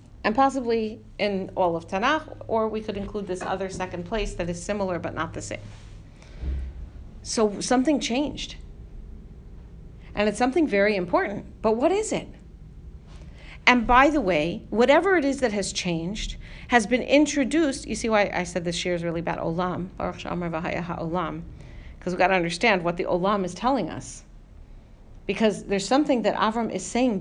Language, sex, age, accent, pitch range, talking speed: English, female, 40-59, American, 180-265 Hz, 165 wpm